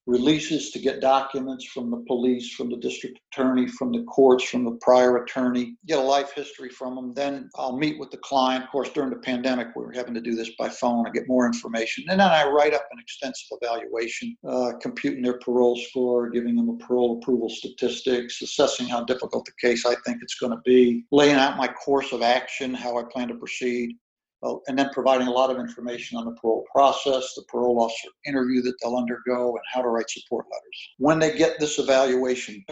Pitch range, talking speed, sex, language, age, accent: 125-145 Hz, 215 wpm, male, English, 60-79, American